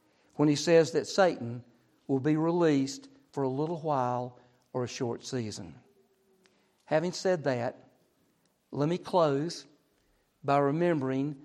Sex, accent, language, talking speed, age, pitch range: male, American, English, 125 wpm, 50-69, 140-180 Hz